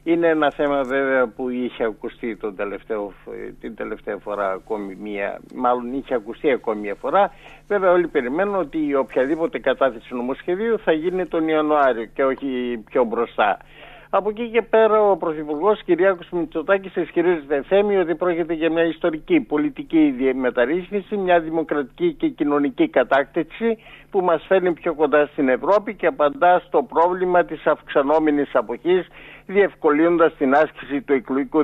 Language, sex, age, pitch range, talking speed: Greek, male, 50-69, 135-185 Hz, 145 wpm